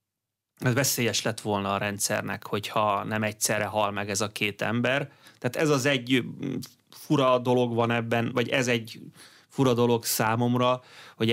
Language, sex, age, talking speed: Hungarian, male, 30-49, 160 wpm